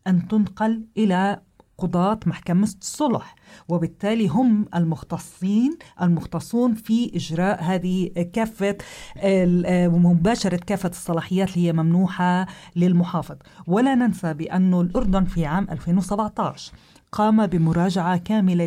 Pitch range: 175-220 Hz